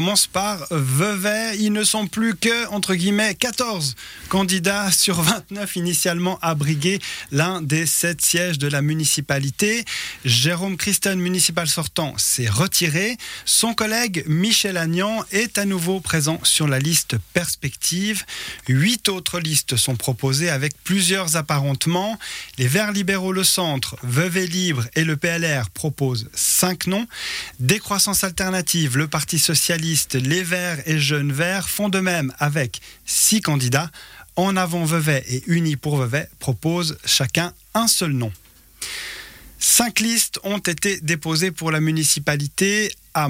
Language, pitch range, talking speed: French, 145-190 Hz, 140 wpm